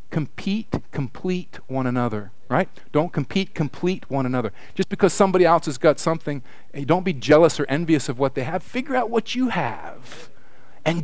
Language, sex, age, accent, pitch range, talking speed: English, male, 40-59, American, 130-185 Hz, 175 wpm